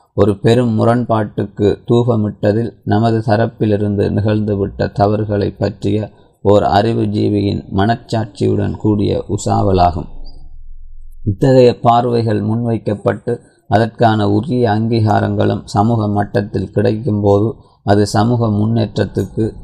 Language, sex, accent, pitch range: Tamil, male, native, 100-115 Hz